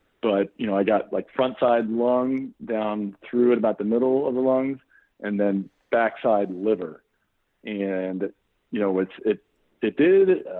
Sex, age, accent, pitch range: male, 40-59, American, 105-125 Hz